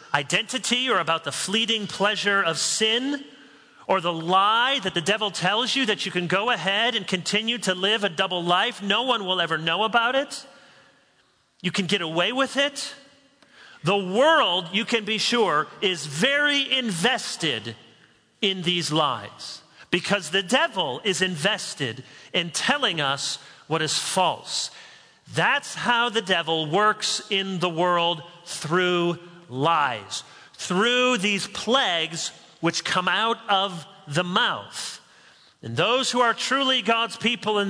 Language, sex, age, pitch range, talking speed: English, male, 40-59, 165-225 Hz, 145 wpm